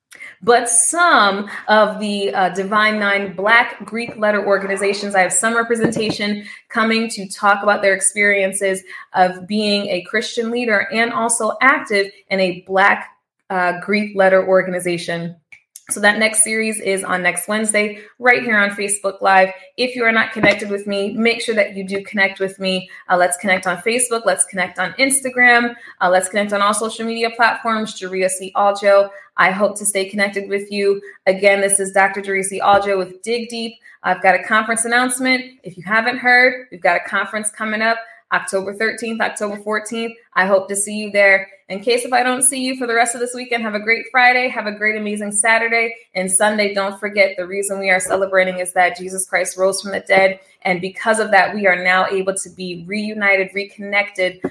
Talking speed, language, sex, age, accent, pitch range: 195 wpm, English, female, 20-39, American, 190-220 Hz